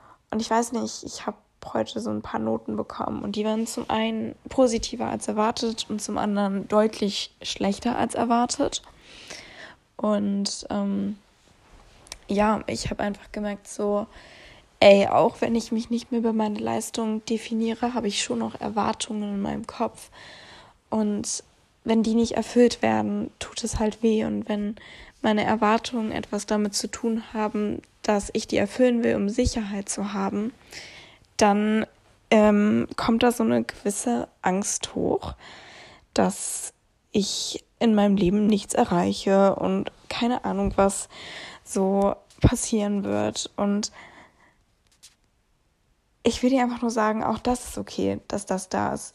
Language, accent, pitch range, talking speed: German, German, 200-230 Hz, 145 wpm